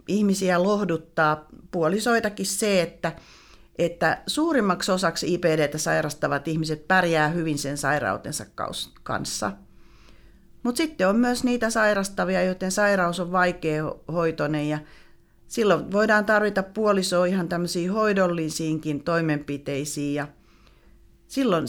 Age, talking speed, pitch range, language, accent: 40-59, 100 wpm, 155-200 Hz, Finnish, native